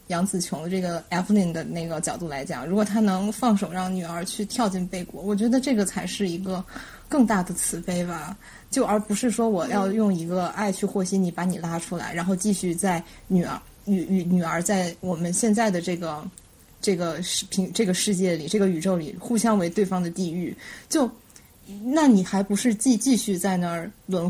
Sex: female